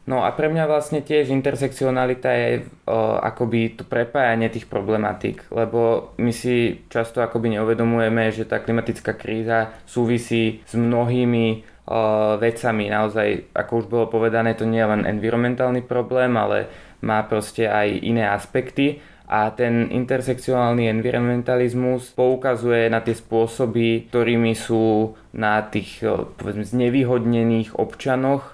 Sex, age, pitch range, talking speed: male, 20-39, 110-125 Hz, 130 wpm